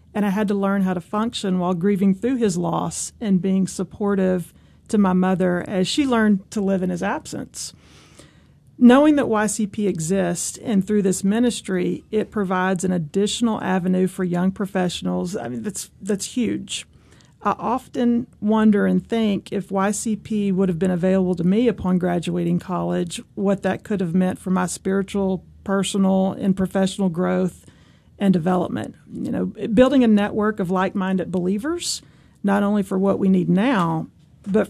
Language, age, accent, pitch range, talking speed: English, 40-59, American, 185-215 Hz, 165 wpm